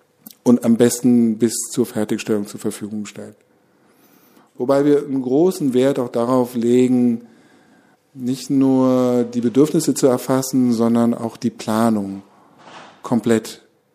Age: 50-69